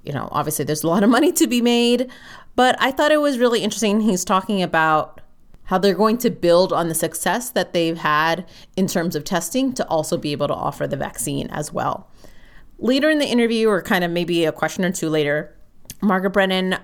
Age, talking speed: 30-49, 215 wpm